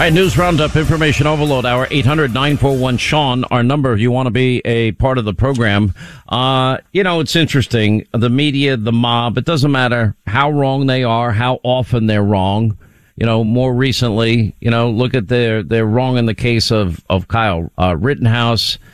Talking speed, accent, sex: 205 wpm, American, male